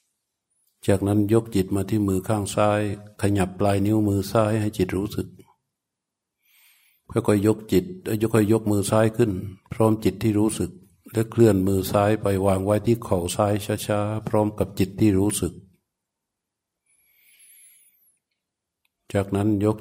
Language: Thai